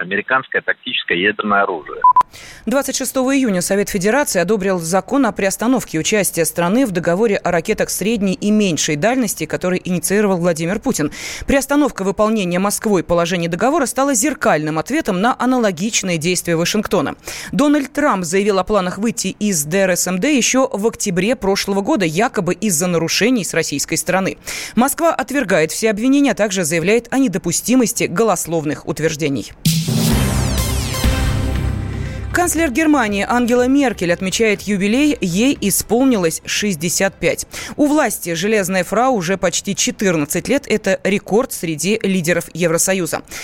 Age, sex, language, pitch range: 20-39, female, Russian, 180-245 Hz